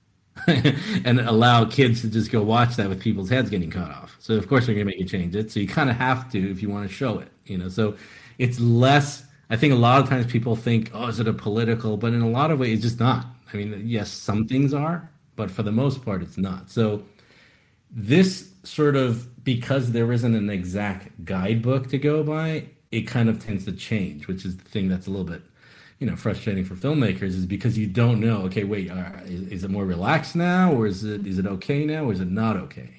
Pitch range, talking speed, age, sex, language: 100-125 Hz, 240 wpm, 40-59, male, English